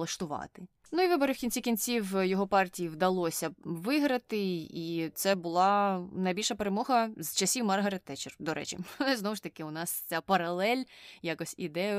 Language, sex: Ukrainian, female